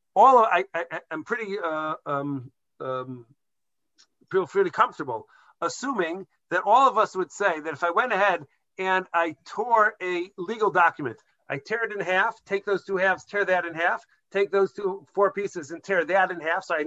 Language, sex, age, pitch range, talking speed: English, male, 50-69, 175-220 Hz, 195 wpm